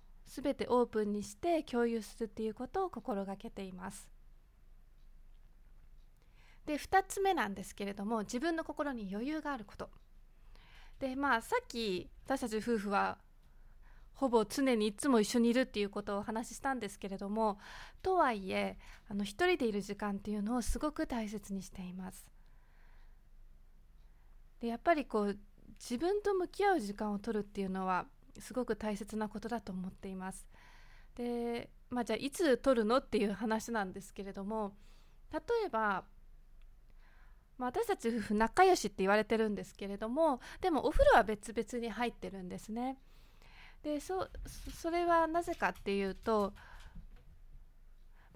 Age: 20-39